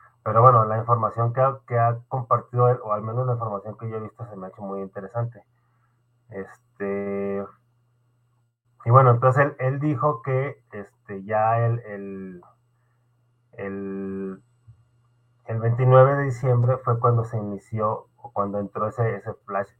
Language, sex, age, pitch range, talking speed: Spanish, male, 30-49, 105-120 Hz, 160 wpm